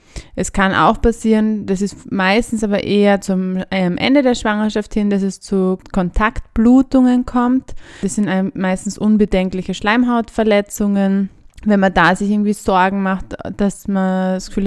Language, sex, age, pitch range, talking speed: German, female, 20-39, 185-215 Hz, 145 wpm